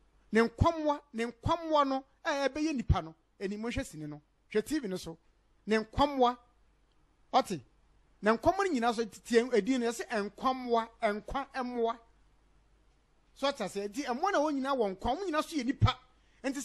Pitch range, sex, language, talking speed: 205-285 Hz, male, English, 175 wpm